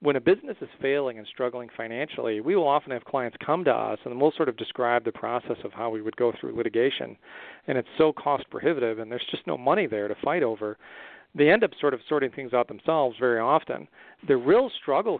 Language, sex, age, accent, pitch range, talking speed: English, male, 40-59, American, 115-140 Hz, 230 wpm